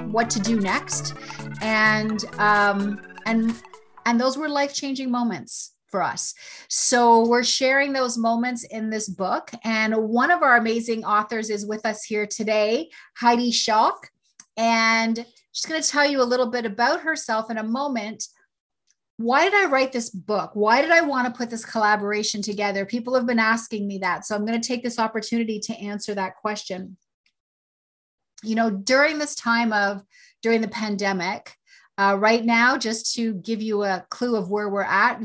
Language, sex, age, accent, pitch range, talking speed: English, female, 30-49, American, 205-240 Hz, 175 wpm